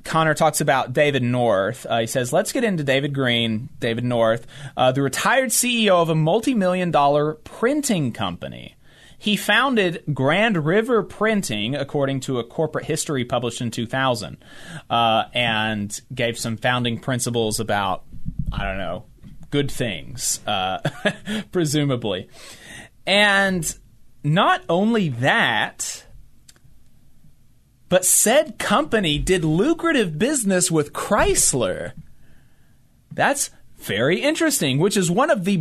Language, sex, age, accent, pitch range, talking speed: English, male, 30-49, American, 125-210 Hz, 120 wpm